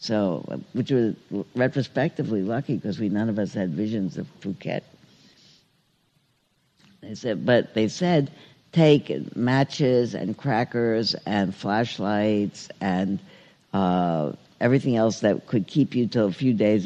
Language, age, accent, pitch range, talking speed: English, 60-79, American, 100-135 Hz, 130 wpm